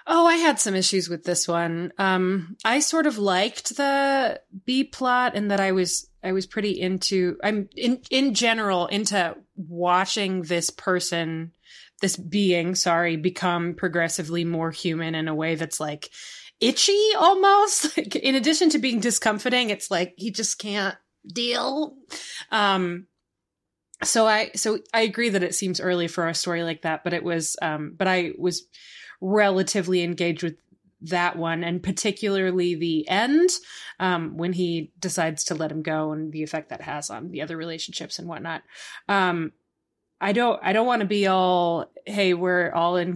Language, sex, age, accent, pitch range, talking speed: English, female, 20-39, American, 170-225 Hz, 165 wpm